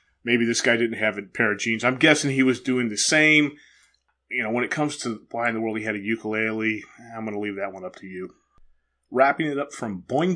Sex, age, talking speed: male, 30-49, 255 wpm